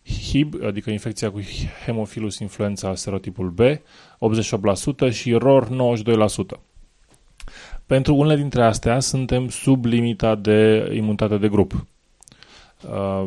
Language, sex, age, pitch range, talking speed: English, male, 20-39, 100-125 Hz, 110 wpm